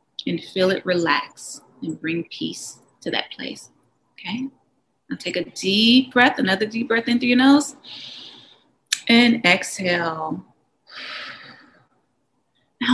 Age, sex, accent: 30-49, female, American